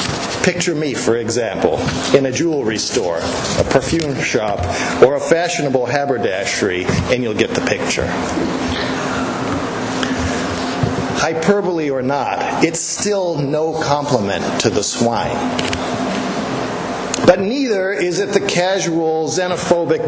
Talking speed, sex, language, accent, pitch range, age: 110 wpm, male, English, American, 140-190 Hz, 50-69